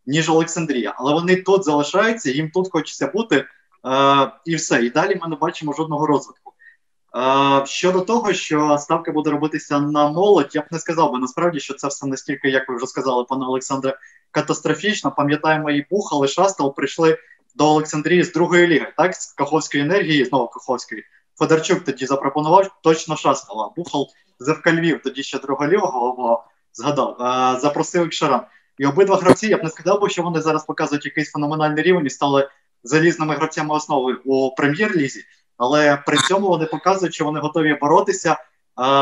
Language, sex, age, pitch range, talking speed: Ukrainian, male, 20-39, 140-165 Hz, 165 wpm